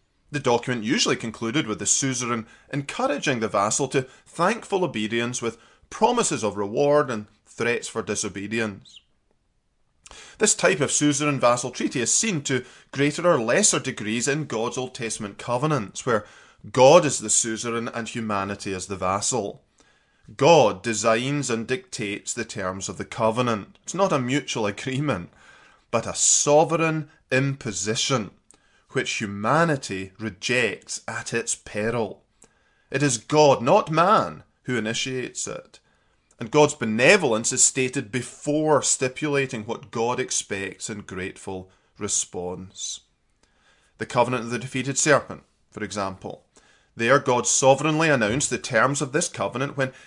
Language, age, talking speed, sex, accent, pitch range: English, 20-39, 135 wpm, male, British, 105-140 Hz